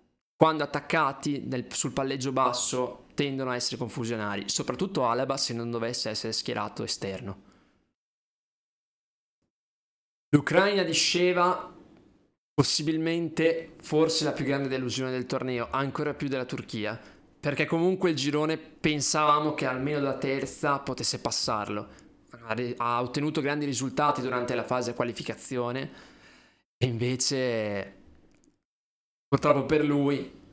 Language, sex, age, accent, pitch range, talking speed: Italian, male, 20-39, native, 115-145 Hz, 110 wpm